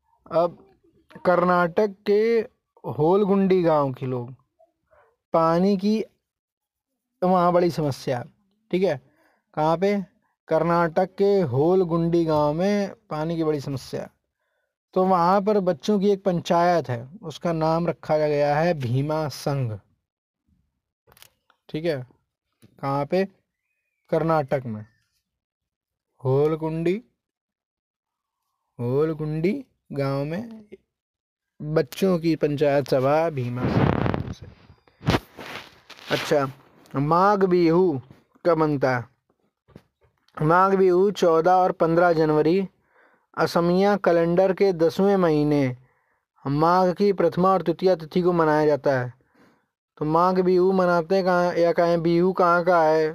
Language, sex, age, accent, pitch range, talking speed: Hindi, male, 20-39, native, 150-190 Hz, 105 wpm